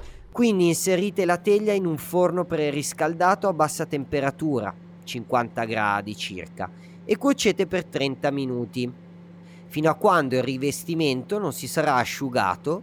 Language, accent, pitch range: Italian, native, 125-185 Hz